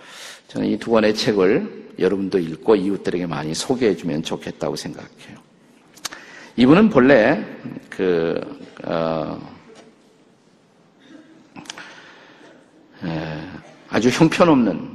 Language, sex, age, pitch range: Korean, male, 50-69, 100-165 Hz